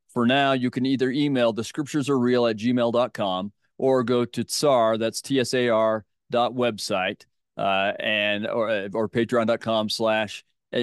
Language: English